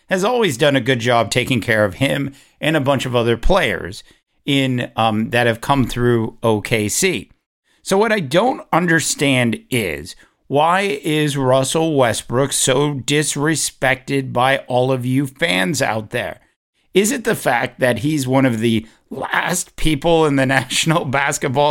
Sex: male